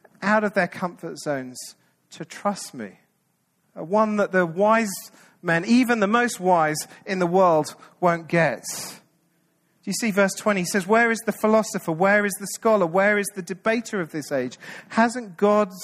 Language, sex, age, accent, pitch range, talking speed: English, male, 40-59, British, 160-205 Hz, 170 wpm